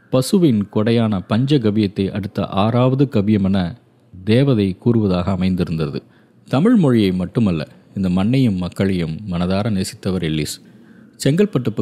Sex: male